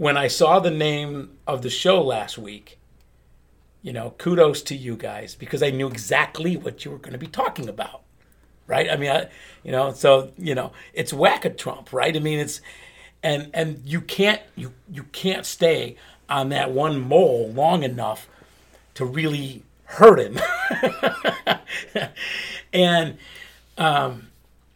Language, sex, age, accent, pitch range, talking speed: English, male, 50-69, American, 110-155 Hz, 160 wpm